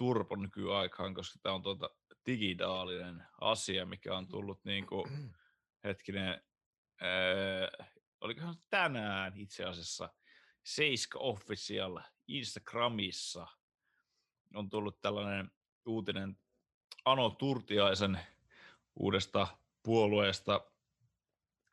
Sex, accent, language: male, native, Finnish